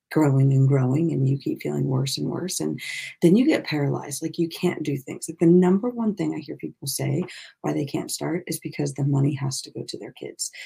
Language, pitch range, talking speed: English, 145-180 Hz, 240 wpm